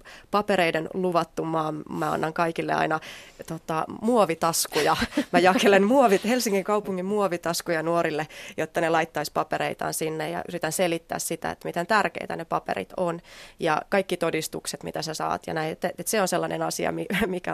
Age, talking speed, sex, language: 30-49, 155 wpm, female, Finnish